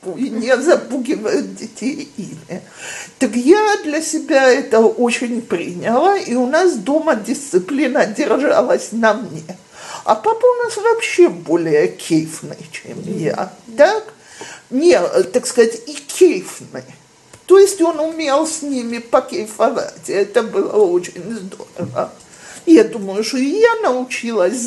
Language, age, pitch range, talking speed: Russian, 50-69, 215-335 Hz, 125 wpm